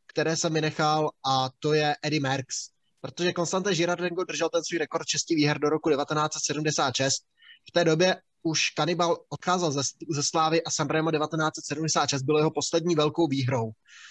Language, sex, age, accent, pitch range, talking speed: Czech, male, 20-39, native, 145-165 Hz, 160 wpm